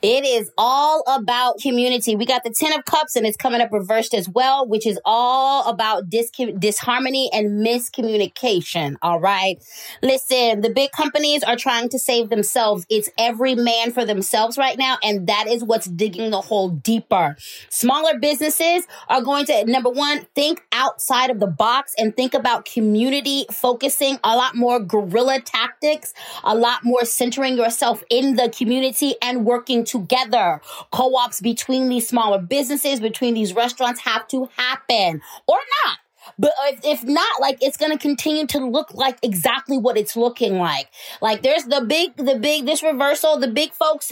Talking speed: 170 wpm